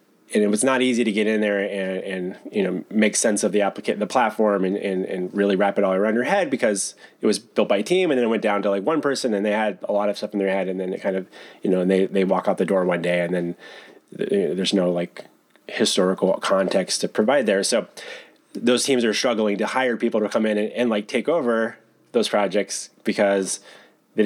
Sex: male